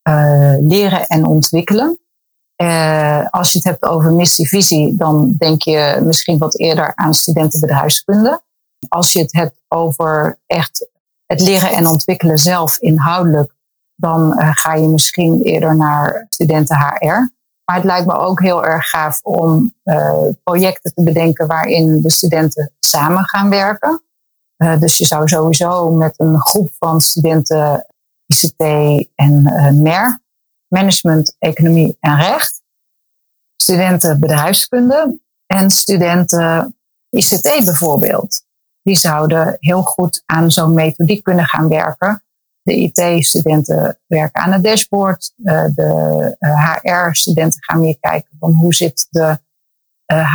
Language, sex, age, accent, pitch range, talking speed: Dutch, female, 40-59, Dutch, 155-185 Hz, 130 wpm